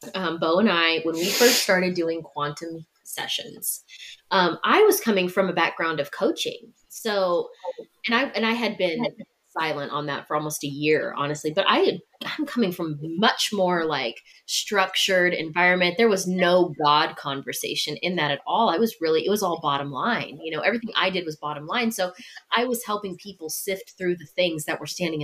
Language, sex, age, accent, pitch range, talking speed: English, female, 20-39, American, 160-230 Hz, 195 wpm